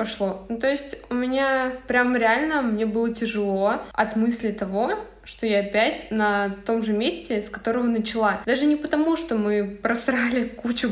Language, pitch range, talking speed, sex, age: Russian, 205-235 Hz, 170 wpm, female, 20-39